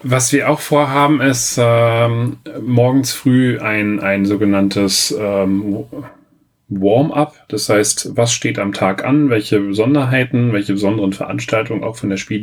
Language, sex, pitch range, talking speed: German, male, 105-130 Hz, 140 wpm